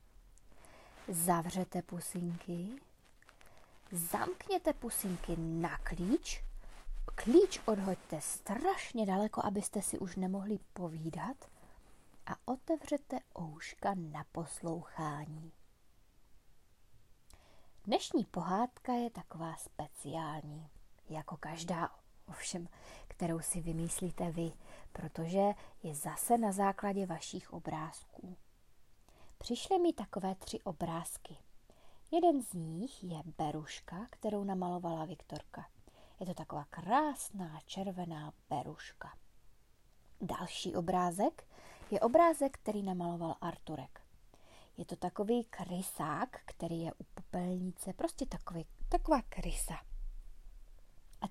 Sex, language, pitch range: female, Czech, 165-225 Hz